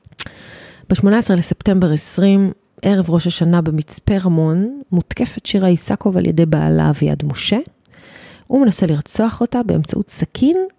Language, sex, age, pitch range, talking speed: Hebrew, female, 30-49, 165-210 Hz, 120 wpm